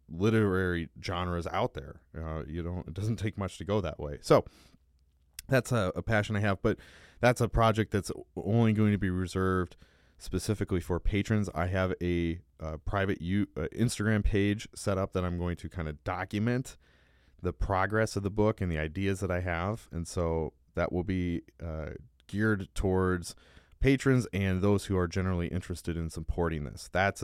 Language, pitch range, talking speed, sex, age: English, 80-100 Hz, 180 wpm, male, 30-49